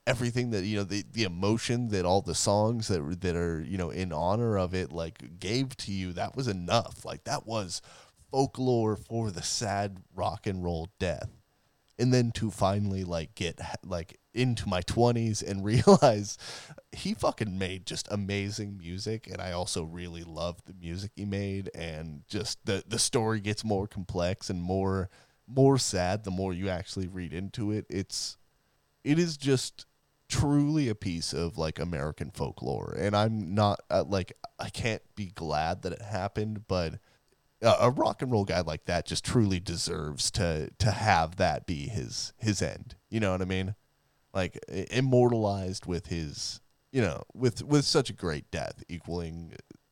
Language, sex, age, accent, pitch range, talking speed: English, male, 20-39, American, 90-115 Hz, 175 wpm